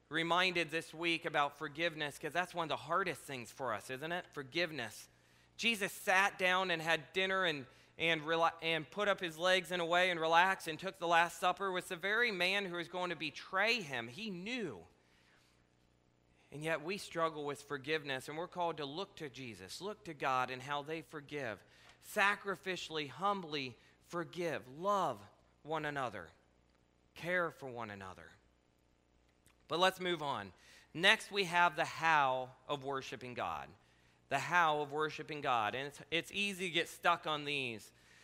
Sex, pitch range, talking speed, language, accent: male, 145-200 Hz, 170 wpm, English, American